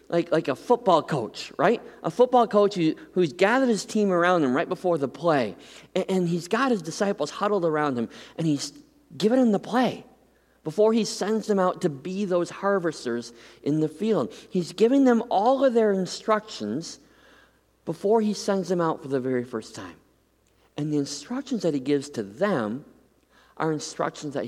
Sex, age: male, 40-59